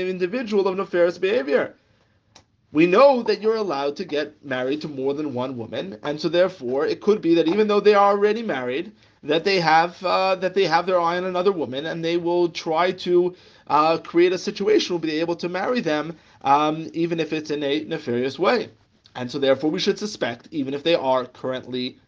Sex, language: male, English